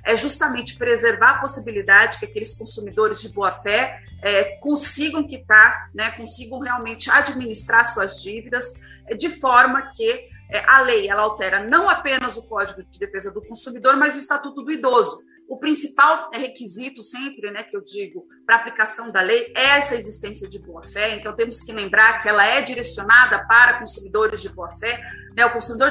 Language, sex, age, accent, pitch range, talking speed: Portuguese, female, 40-59, Brazilian, 225-285 Hz, 160 wpm